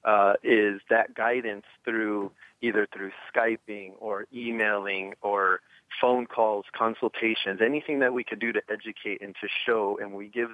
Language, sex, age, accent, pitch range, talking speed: English, male, 30-49, American, 100-115 Hz, 155 wpm